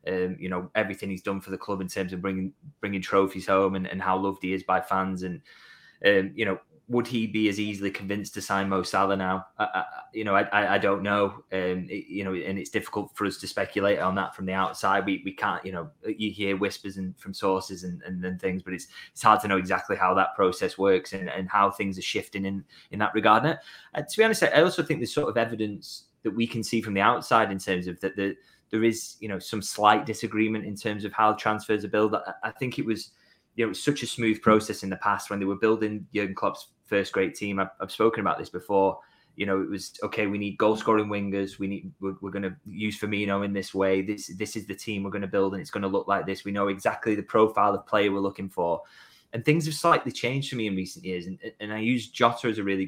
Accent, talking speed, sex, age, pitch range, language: British, 265 wpm, male, 20-39, 95-110 Hz, English